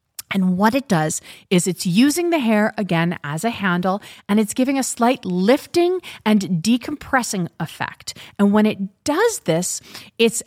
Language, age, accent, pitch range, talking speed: English, 30-49, American, 175-235 Hz, 160 wpm